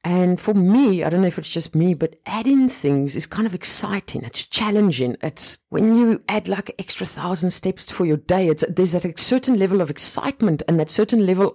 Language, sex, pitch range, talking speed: English, female, 135-170 Hz, 215 wpm